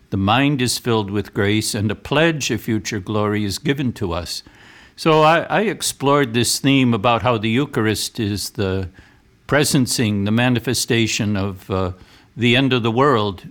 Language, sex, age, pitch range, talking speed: English, male, 60-79, 100-125 Hz, 170 wpm